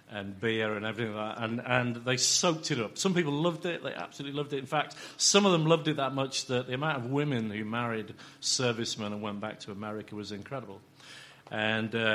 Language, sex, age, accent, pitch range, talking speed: English, male, 40-59, British, 110-135 Hz, 215 wpm